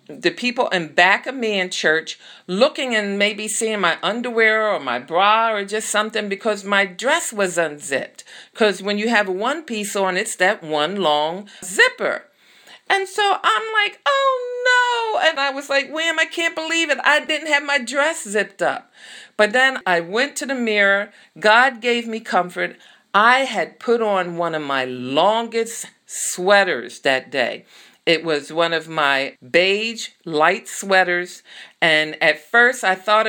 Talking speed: 170 wpm